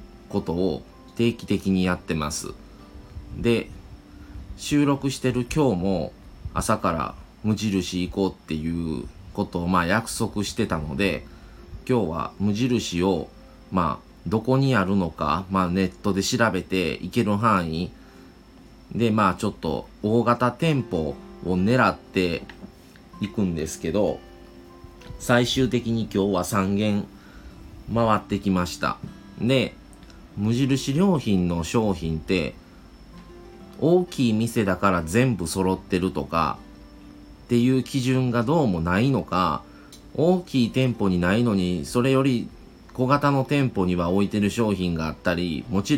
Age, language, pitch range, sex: 30-49, Japanese, 90-120 Hz, male